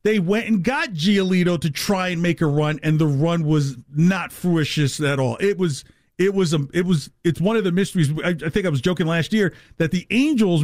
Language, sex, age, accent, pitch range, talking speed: English, male, 40-59, American, 145-185 Hz, 235 wpm